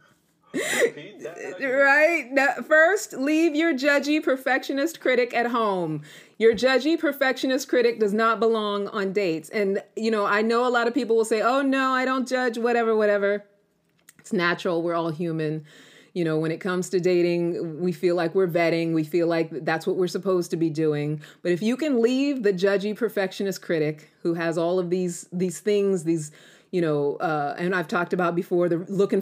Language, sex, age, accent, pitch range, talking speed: English, female, 30-49, American, 165-235 Hz, 185 wpm